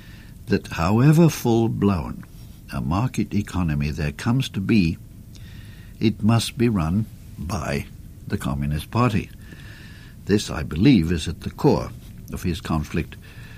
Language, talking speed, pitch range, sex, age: English, 125 wpm, 95-115 Hz, male, 60-79